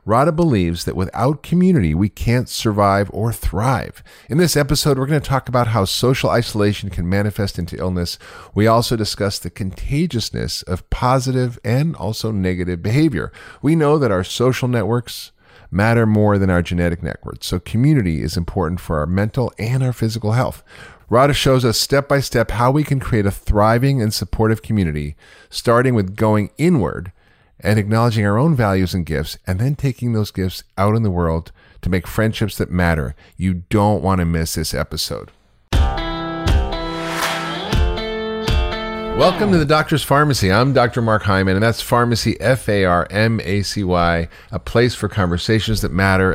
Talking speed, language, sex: 160 wpm, English, male